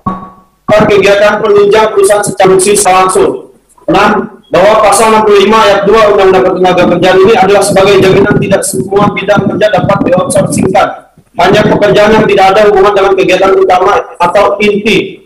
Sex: male